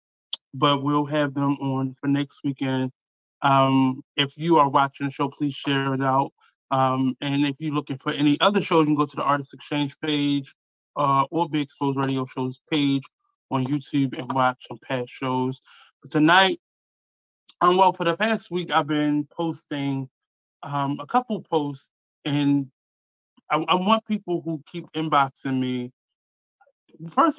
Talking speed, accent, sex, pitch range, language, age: 165 wpm, American, male, 135-165 Hz, English, 20-39